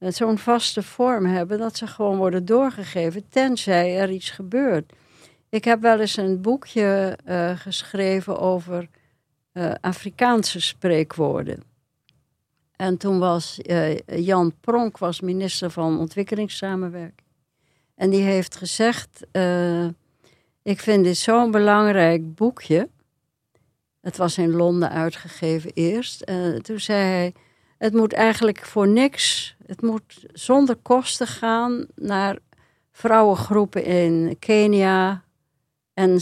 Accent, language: Dutch, Dutch